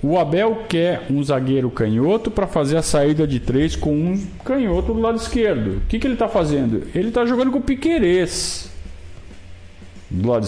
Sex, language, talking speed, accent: male, Portuguese, 185 wpm, Brazilian